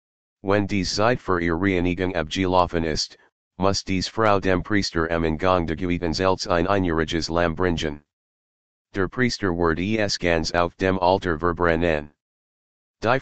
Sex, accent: male, American